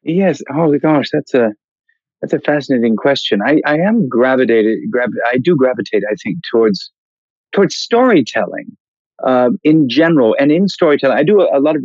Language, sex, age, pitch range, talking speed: English, male, 50-69, 110-165 Hz, 170 wpm